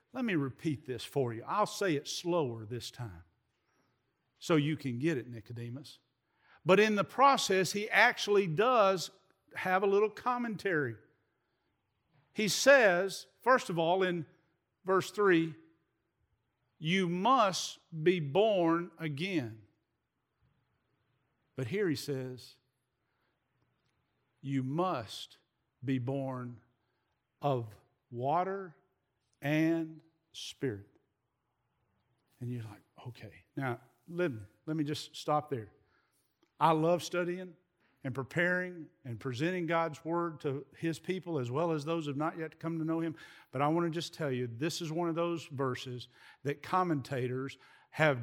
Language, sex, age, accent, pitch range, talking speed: English, male, 50-69, American, 130-170 Hz, 130 wpm